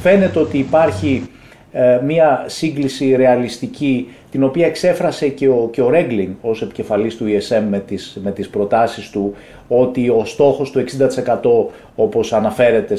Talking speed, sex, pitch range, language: 145 wpm, male, 105-135 Hz, Greek